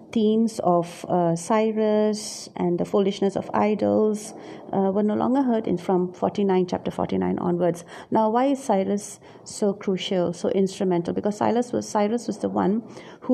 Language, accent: English, Indian